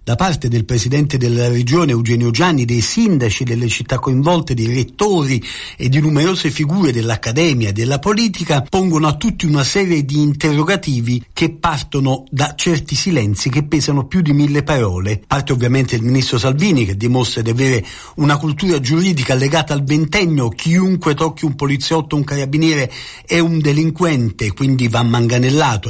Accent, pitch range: native, 130-160 Hz